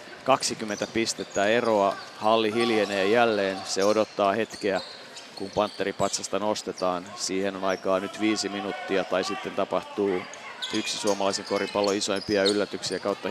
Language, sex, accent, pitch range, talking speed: Finnish, male, native, 120-150 Hz, 120 wpm